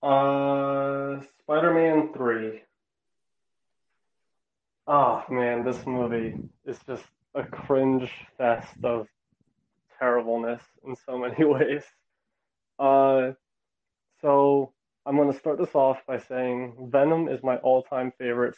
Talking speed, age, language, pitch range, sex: 105 wpm, 20-39, English, 125-145 Hz, male